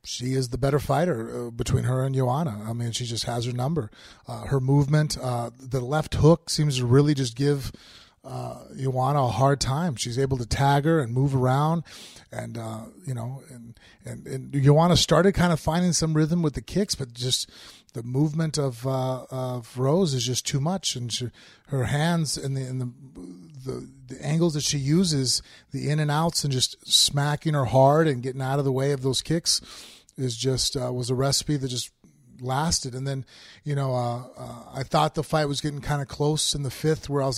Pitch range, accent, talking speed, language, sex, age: 125-150 Hz, American, 210 wpm, English, male, 30-49